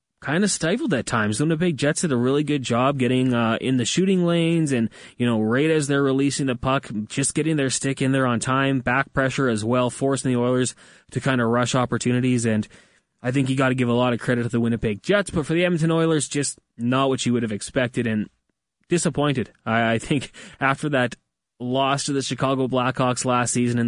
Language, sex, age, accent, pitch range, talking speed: English, male, 20-39, American, 115-145 Hz, 225 wpm